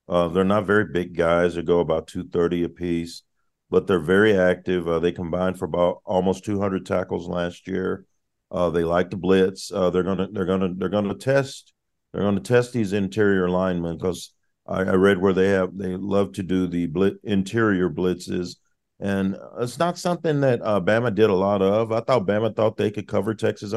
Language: English